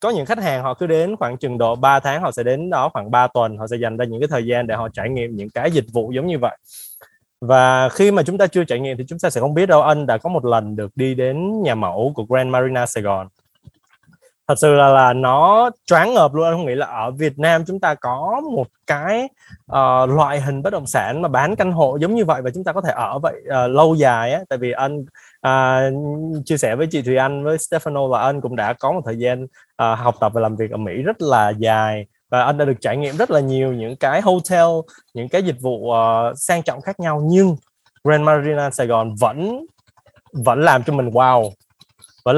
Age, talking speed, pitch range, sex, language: 20-39, 250 wpm, 120-160 Hz, male, Vietnamese